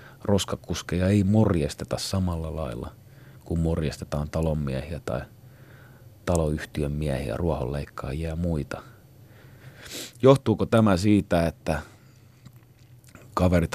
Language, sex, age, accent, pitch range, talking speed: Finnish, male, 30-49, native, 80-125 Hz, 85 wpm